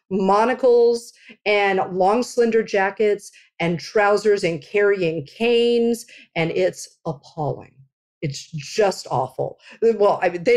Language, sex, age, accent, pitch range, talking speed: English, female, 50-69, American, 180-230 Hz, 115 wpm